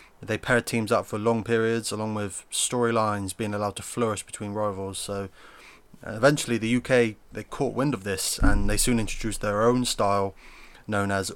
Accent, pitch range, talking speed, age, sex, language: British, 95-115 Hz, 180 wpm, 20-39, male, English